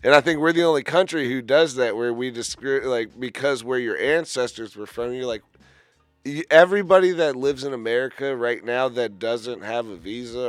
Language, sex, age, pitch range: English, male, 30-49, 120-160 Hz